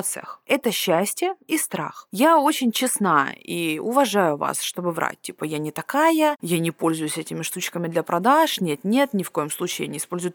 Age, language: 20-39, Russian